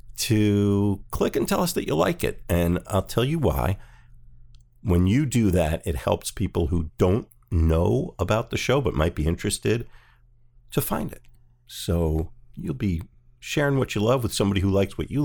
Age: 50-69